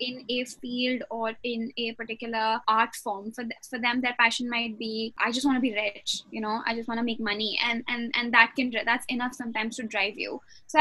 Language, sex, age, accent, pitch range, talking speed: English, female, 10-29, Indian, 225-275 Hz, 240 wpm